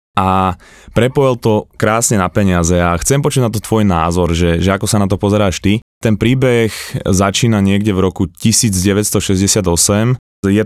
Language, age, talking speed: Slovak, 20-39, 165 wpm